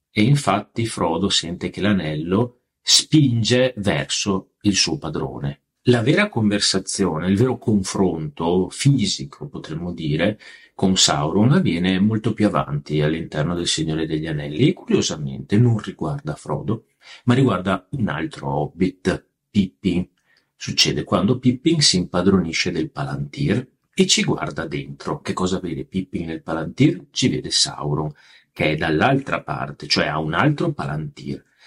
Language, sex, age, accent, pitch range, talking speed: Italian, male, 40-59, native, 85-135 Hz, 135 wpm